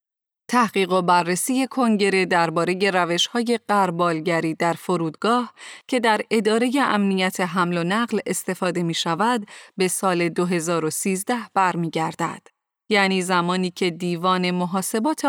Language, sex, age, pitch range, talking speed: Persian, female, 30-49, 175-225 Hz, 105 wpm